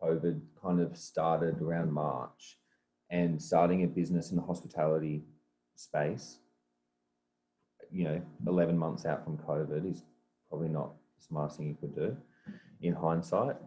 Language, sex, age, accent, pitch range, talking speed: English, male, 20-39, Australian, 70-85 Hz, 140 wpm